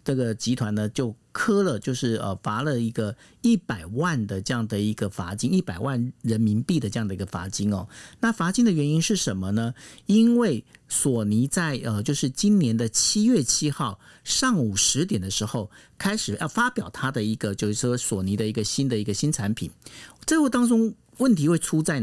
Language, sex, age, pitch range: Chinese, male, 50-69, 110-170 Hz